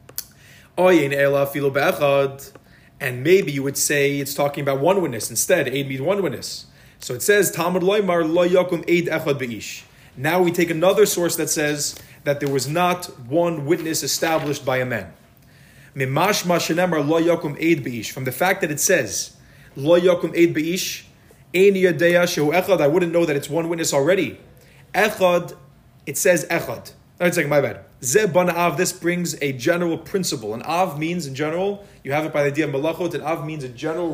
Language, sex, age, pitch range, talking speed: English, male, 30-49, 140-180 Hz, 155 wpm